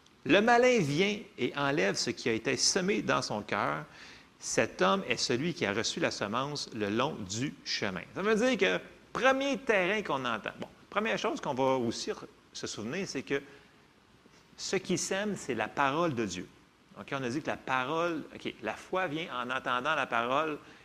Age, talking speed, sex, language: 40-59, 200 wpm, male, French